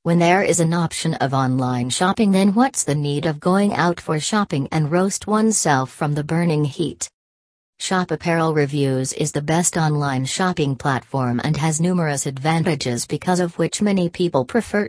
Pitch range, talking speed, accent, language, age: 145-180 Hz, 175 wpm, American, English, 40-59